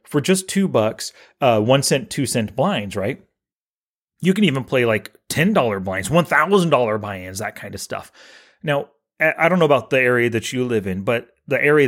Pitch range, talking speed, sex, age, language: 110-155 Hz, 195 wpm, male, 30-49, English